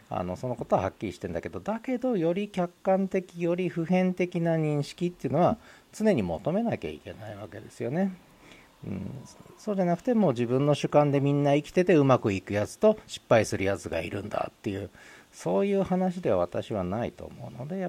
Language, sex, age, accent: Japanese, male, 40-59, native